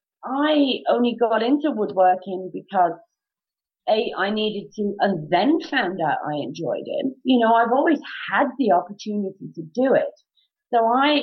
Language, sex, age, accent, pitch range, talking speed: English, female, 40-59, British, 195-250 Hz, 155 wpm